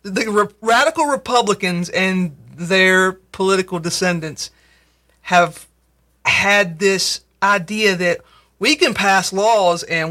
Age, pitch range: 30-49, 180-225 Hz